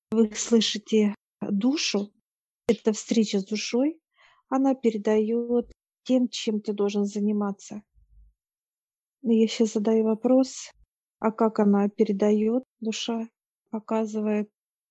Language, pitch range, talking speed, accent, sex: Russian, 205-230 Hz, 95 wpm, native, female